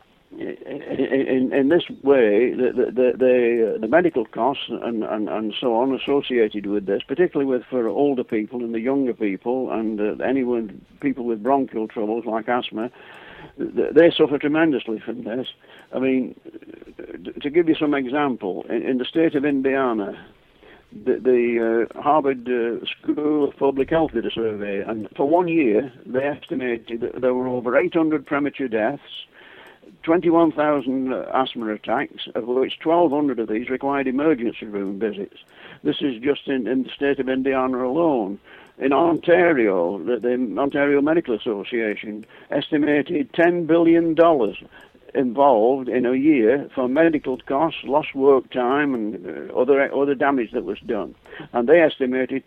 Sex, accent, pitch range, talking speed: male, British, 120-155 Hz, 155 wpm